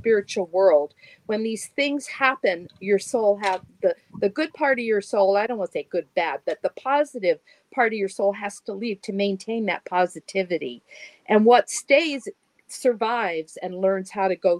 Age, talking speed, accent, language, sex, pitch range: 50-69, 190 wpm, American, English, female, 175-235 Hz